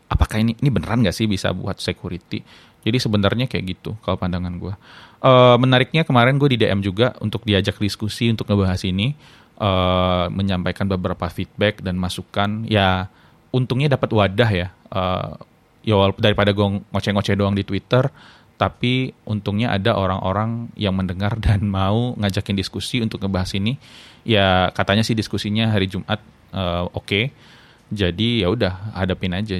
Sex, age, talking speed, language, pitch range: male, 20-39, 155 wpm, Indonesian, 95-115 Hz